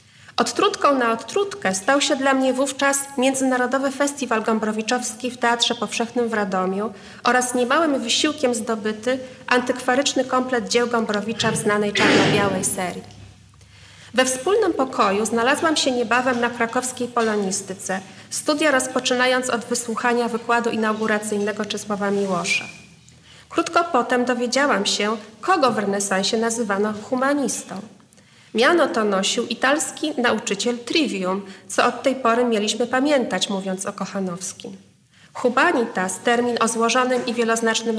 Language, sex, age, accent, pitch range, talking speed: Polish, female, 30-49, native, 210-255 Hz, 120 wpm